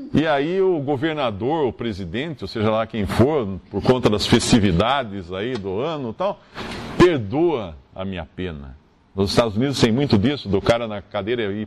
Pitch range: 100-160 Hz